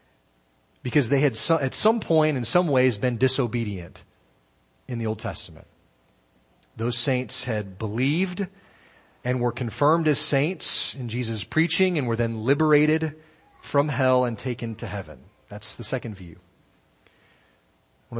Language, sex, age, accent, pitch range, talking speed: English, male, 40-59, American, 110-150 Hz, 140 wpm